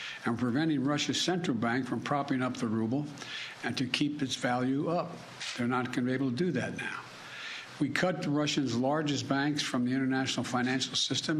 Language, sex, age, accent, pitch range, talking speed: English, male, 60-79, American, 125-150 Hz, 195 wpm